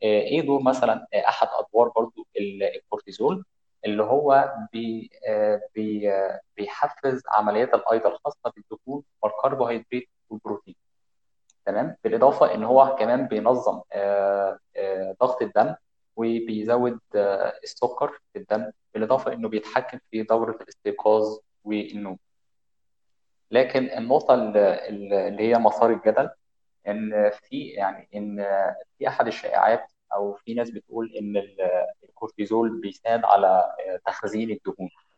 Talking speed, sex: 105 wpm, male